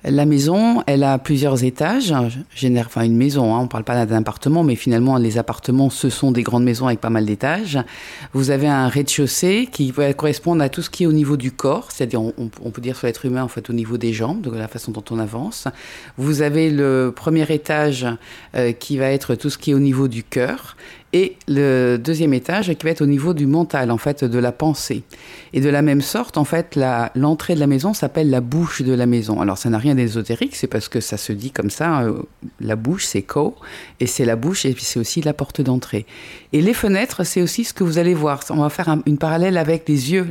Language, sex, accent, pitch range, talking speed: French, female, French, 125-160 Hz, 245 wpm